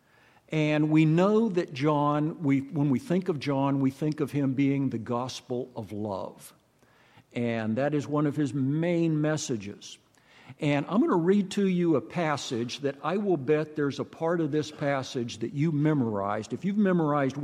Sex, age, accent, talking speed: male, 60-79, American, 180 wpm